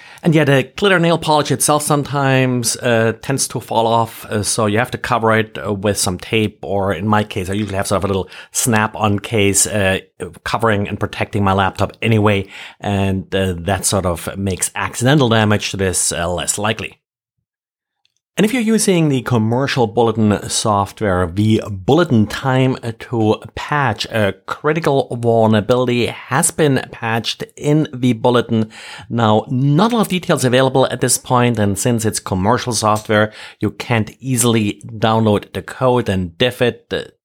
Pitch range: 100-125 Hz